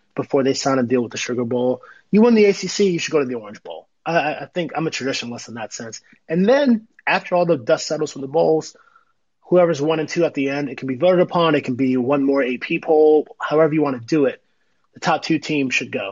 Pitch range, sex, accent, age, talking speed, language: 130-175 Hz, male, American, 30-49, 260 wpm, English